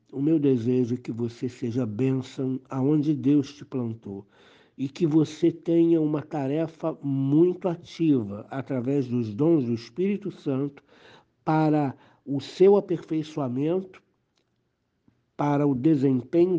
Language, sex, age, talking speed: Portuguese, male, 60-79, 120 wpm